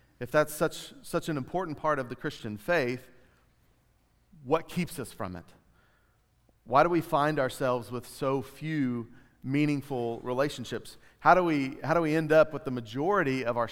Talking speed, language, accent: 170 wpm, English, American